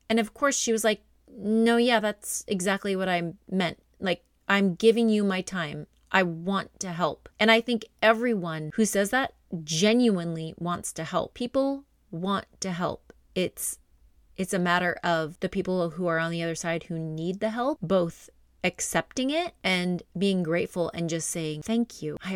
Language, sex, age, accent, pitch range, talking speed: English, female, 30-49, American, 160-215 Hz, 180 wpm